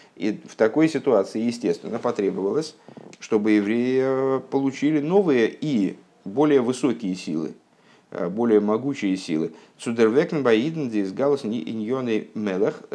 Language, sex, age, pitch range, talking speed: Russian, male, 50-69, 100-145 Hz, 100 wpm